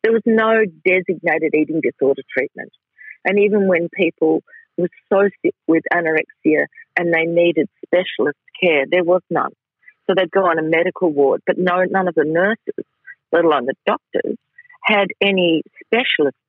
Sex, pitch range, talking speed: female, 160-220 Hz, 155 wpm